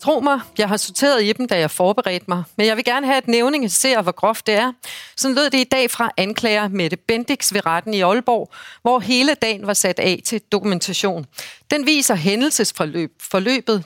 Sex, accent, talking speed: female, native, 210 wpm